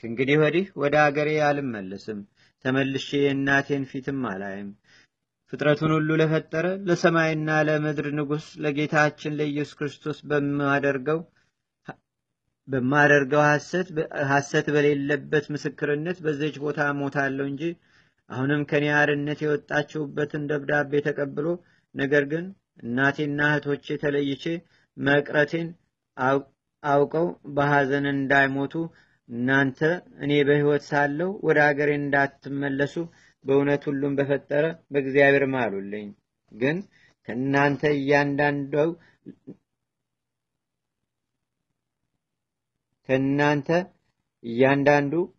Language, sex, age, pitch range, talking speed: Amharic, male, 40-59, 140-150 Hz, 80 wpm